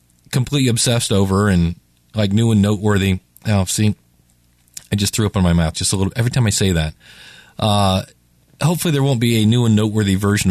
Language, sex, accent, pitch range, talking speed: English, male, American, 105-155 Hz, 200 wpm